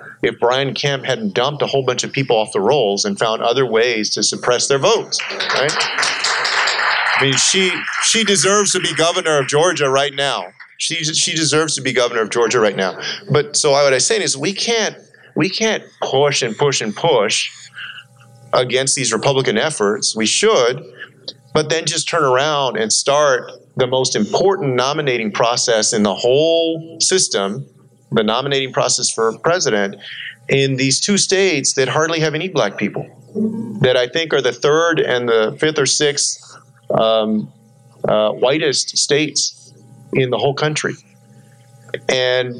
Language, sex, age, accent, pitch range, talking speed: English, male, 40-59, American, 125-160 Hz, 165 wpm